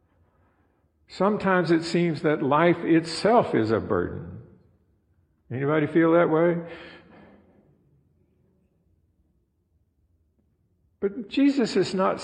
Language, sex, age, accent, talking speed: English, male, 50-69, American, 85 wpm